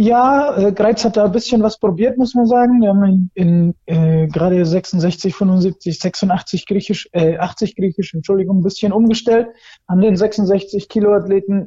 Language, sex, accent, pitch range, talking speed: German, male, German, 155-190 Hz, 160 wpm